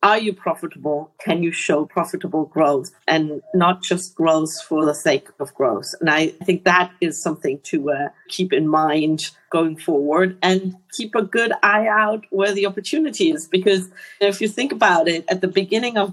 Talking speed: 185 wpm